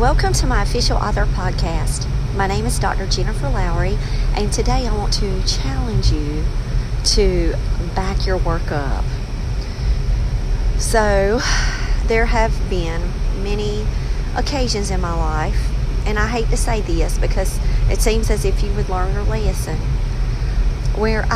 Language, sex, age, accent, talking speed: English, female, 40-59, American, 140 wpm